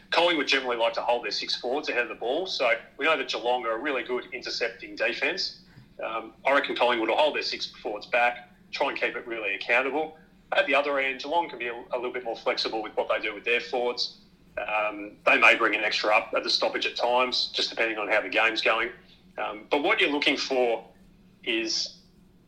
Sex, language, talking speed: male, English, 225 wpm